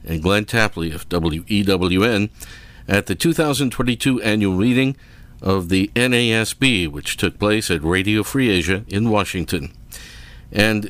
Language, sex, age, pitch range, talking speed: English, male, 50-69, 85-115 Hz, 125 wpm